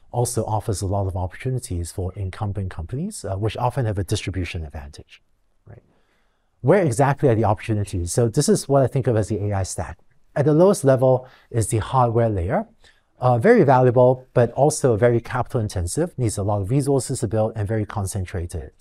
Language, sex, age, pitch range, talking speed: English, male, 50-69, 100-130 Hz, 185 wpm